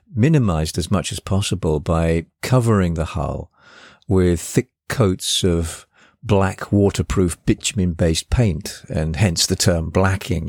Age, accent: 50-69, British